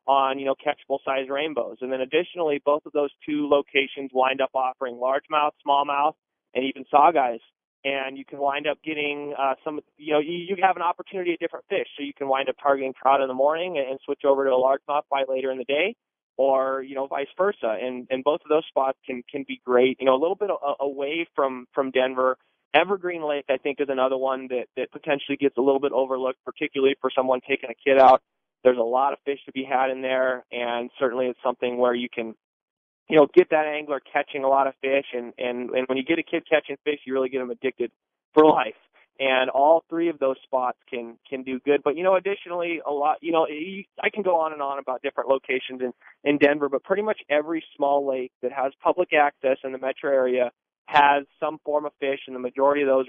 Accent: American